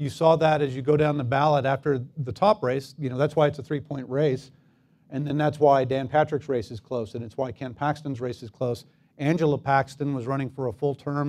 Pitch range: 125-145 Hz